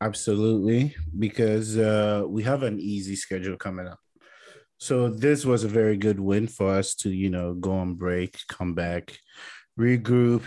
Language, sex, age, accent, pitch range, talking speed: English, male, 30-49, American, 105-135 Hz, 160 wpm